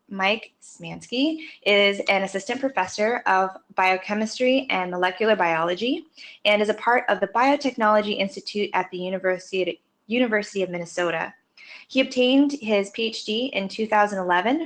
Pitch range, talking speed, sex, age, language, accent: 190-255 Hz, 125 wpm, female, 10-29, English, American